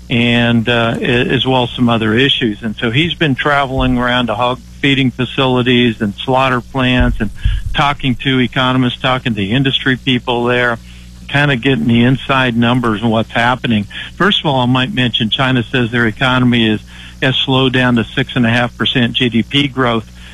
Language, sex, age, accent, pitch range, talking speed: English, male, 60-79, American, 115-130 Hz, 185 wpm